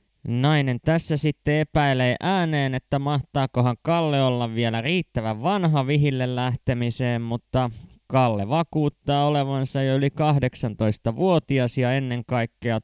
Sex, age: male, 20-39